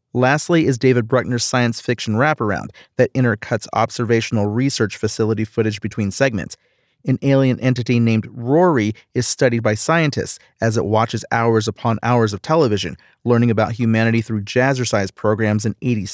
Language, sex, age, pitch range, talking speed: English, male, 40-59, 115-140 Hz, 150 wpm